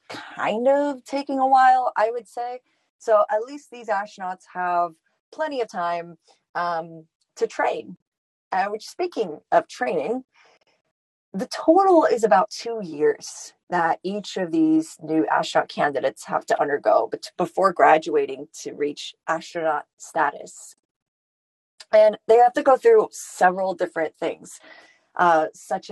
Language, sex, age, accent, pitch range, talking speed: English, female, 30-49, American, 165-225 Hz, 135 wpm